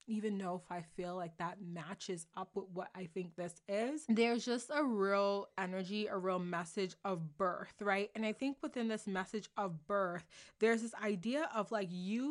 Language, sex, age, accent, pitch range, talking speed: English, female, 20-39, American, 185-225 Hz, 195 wpm